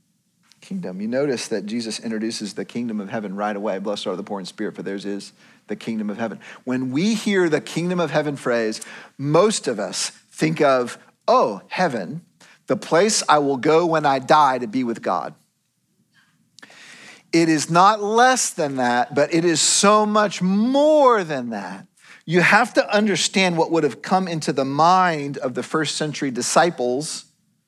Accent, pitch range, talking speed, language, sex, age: American, 135-210 Hz, 175 wpm, English, male, 40-59